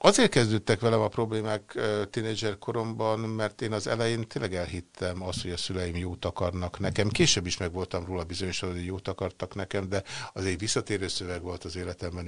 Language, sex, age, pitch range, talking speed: Hungarian, male, 60-79, 90-105 Hz, 175 wpm